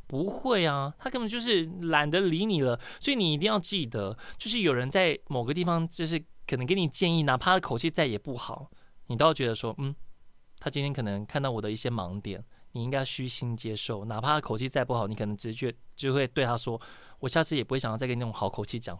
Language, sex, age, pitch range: Chinese, male, 20-39, 125-185 Hz